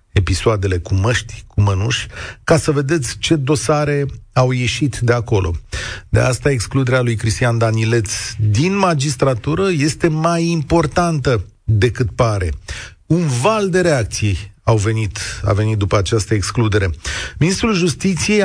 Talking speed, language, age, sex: 125 wpm, Romanian, 40-59, male